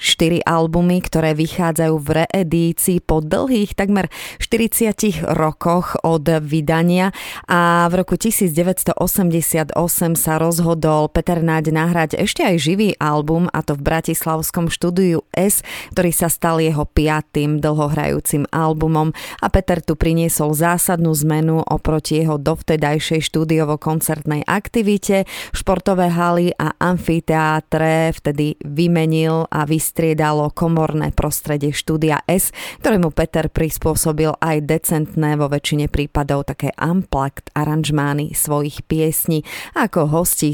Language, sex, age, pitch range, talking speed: Slovak, female, 30-49, 150-170 Hz, 115 wpm